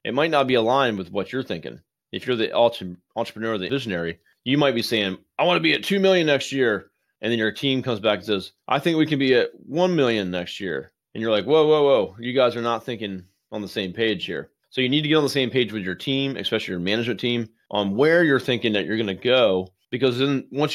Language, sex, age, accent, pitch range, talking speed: English, male, 30-49, American, 105-135 Hz, 265 wpm